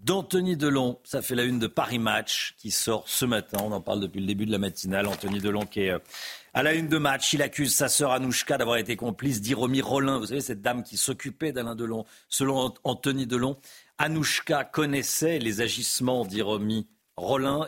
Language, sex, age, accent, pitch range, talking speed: French, male, 50-69, French, 105-135 Hz, 195 wpm